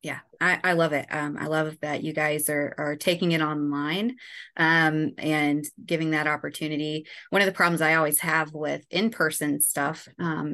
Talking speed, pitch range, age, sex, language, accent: 180 wpm, 155-170 Hz, 20-39, female, English, American